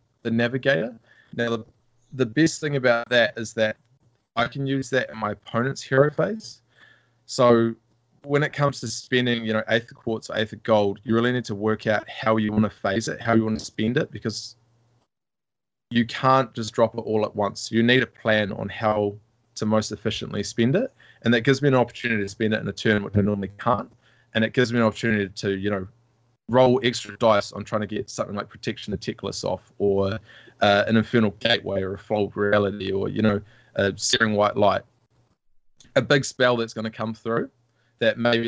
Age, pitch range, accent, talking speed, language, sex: 20-39, 105-125 Hz, Australian, 215 wpm, English, male